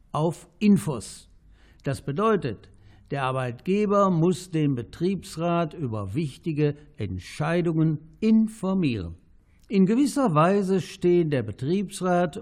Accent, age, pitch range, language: German, 60-79, 120-185 Hz, German